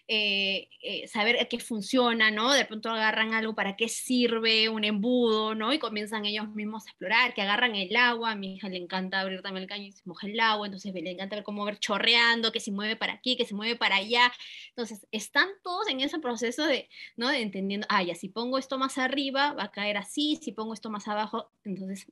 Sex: female